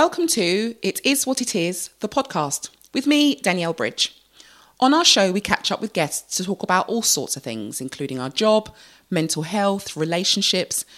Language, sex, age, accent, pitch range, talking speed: English, female, 30-49, British, 155-230 Hz, 185 wpm